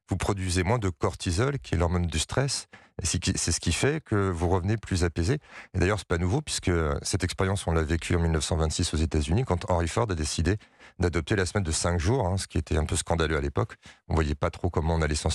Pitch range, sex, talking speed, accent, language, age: 85-100 Hz, male, 255 wpm, French, French, 40-59